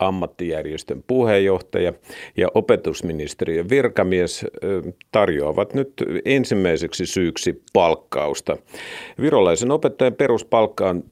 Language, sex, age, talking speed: Finnish, male, 50-69, 70 wpm